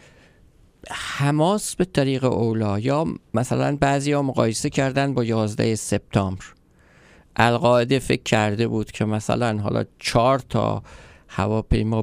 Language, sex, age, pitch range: Persian, male, 50-69, 105-130 Hz